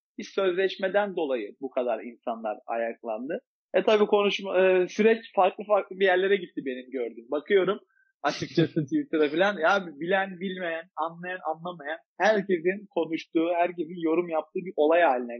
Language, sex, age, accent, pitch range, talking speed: Turkish, male, 40-59, native, 140-190 Hz, 140 wpm